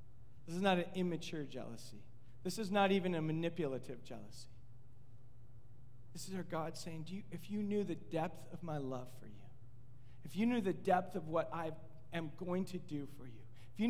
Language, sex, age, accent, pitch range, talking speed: English, male, 40-59, American, 125-180 Hz, 190 wpm